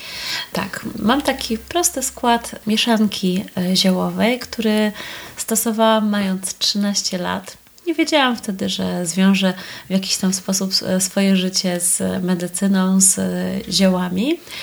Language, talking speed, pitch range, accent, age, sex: Polish, 110 wpm, 185-230 Hz, native, 30-49, female